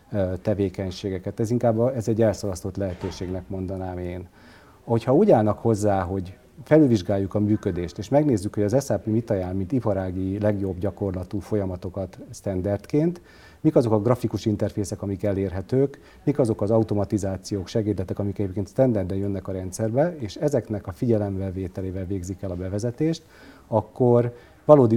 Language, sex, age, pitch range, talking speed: Hungarian, male, 40-59, 100-115 Hz, 140 wpm